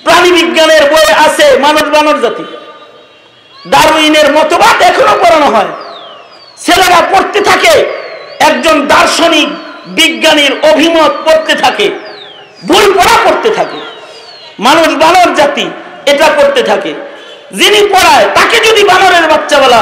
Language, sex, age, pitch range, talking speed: Bengali, male, 50-69, 300-385 Hz, 65 wpm